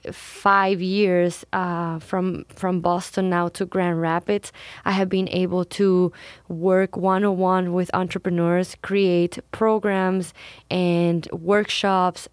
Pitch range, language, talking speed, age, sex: 175-200 Hz, English, 110 wpm, 20-39, female